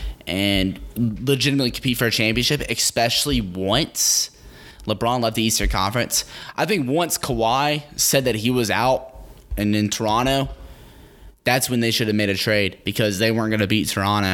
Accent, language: American, English